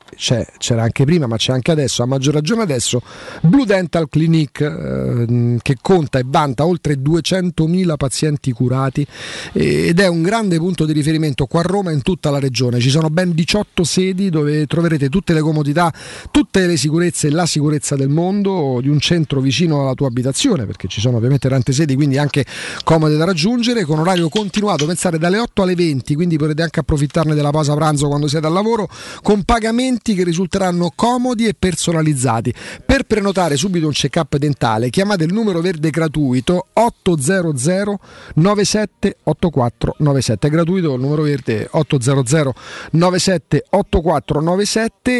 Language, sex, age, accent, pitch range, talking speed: Italian, male, 40-59, native, 145-190 Hz, 160 wpm